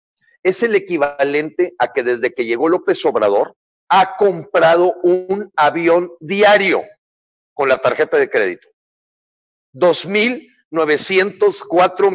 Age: 50-69